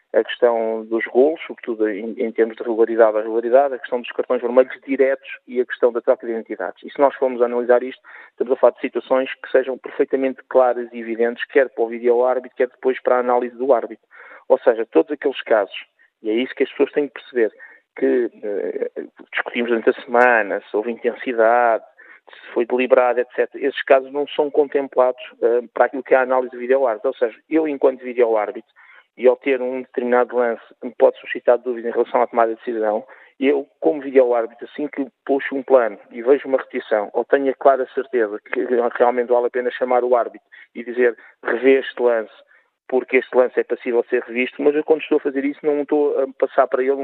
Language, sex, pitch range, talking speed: Portuguese, male, 120-150 Hz, 210 wpm